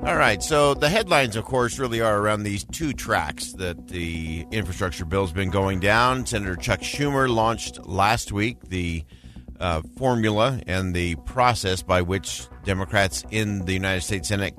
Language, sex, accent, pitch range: English, male, American, 85-110 Hz